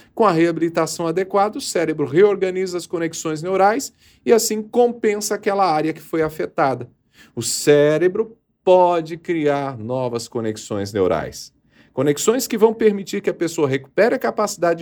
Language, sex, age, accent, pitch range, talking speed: Portuguese, male, 40-59, Brazilian, 135-190 Hz, 140 wpm